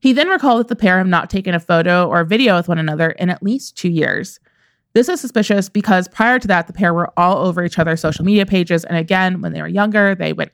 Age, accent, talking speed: 20-39, American, 260 wpm